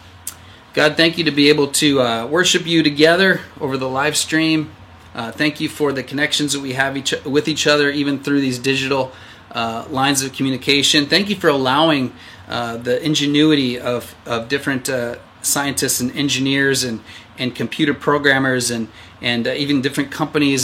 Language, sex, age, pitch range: English, male, 30-49, 115-140 Hz